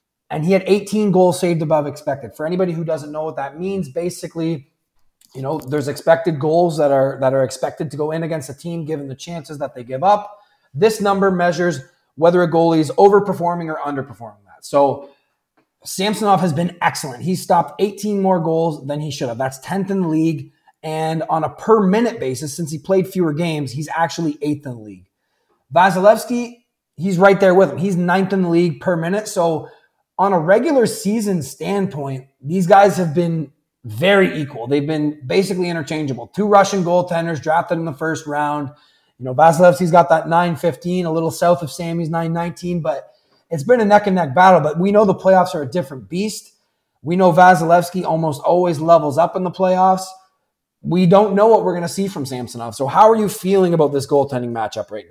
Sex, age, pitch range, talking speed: male, 30-49, 150-190 Hz, 200 wpm